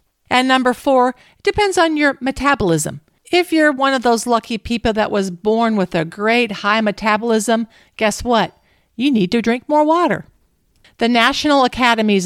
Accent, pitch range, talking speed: American, 190-250 Hz, 165 wpm